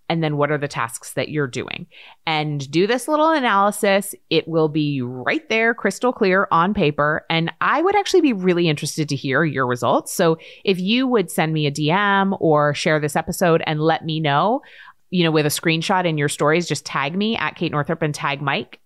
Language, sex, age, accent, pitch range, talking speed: English, female, 30-49, American, 145-195 Hz, 215 wpm